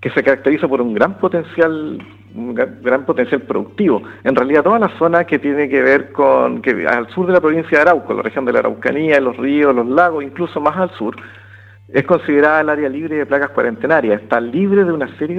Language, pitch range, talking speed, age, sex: Spanish, 120-160 Hz, 215 wpm, 50-69, male